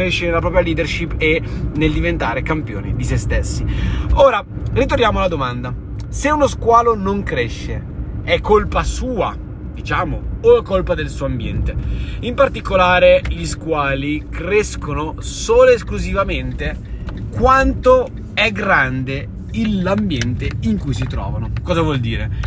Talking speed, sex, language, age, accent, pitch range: 130 wpm, male, Italian, 30-49, native, 120-180 Hz